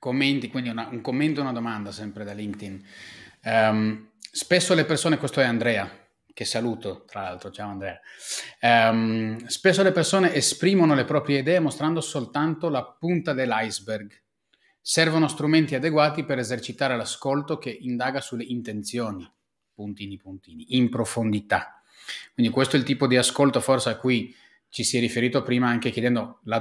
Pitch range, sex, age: 115-140 Hz, male, 30-49